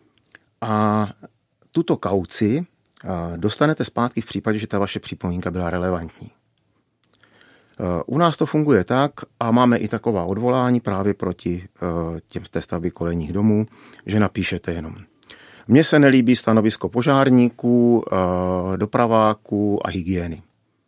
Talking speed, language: 120 wpm, Czech